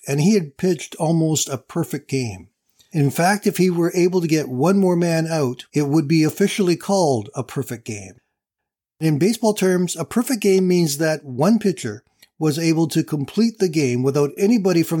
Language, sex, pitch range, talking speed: English, male, 140-175 Hz, 190 wpm